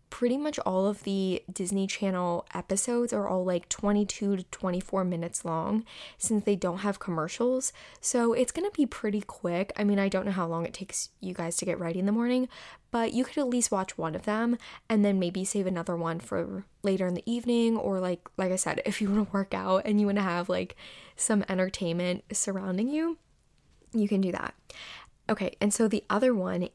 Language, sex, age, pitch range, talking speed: English, female, 10-29, 185-220 Hz, 215 wpm